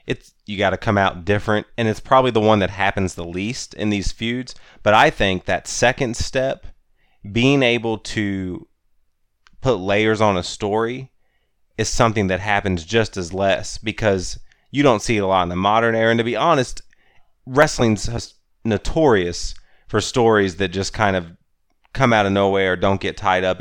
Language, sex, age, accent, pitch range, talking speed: English, male, 30-49, American, 95-115 Hz, 185 wpm